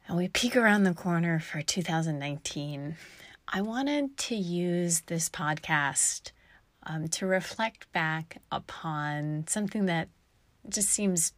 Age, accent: 30-49, American